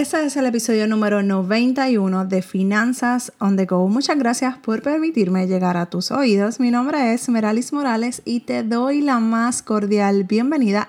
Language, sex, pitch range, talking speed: Spanish, female, 205-260 Hz, 170 wpm